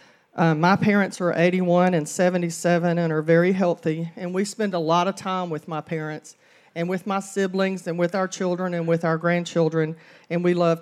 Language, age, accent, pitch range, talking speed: English, 40-59, American, 160-185 Hz, 200 wpm